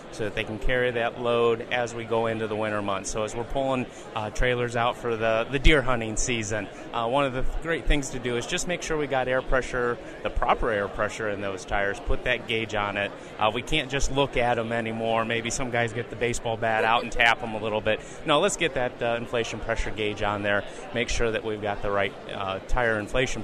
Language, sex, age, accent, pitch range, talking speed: English, male, 30-49, American, 110-130 Hz, 250 wpm